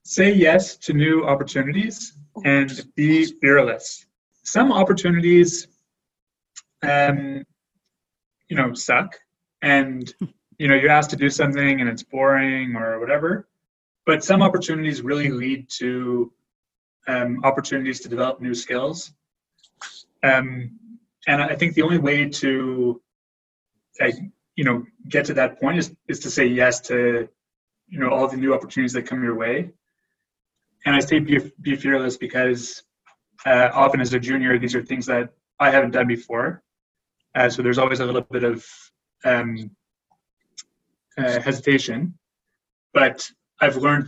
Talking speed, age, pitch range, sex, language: 140 wpm, 30-49, 125-150 Hz, male, English